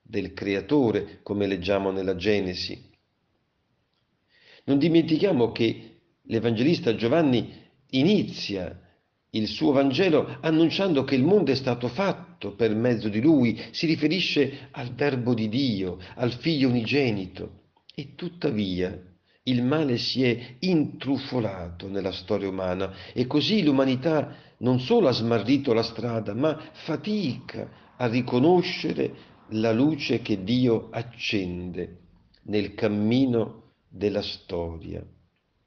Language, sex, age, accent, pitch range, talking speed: Italian, male, 50-69, native, 105-140 Hz, 115 wpm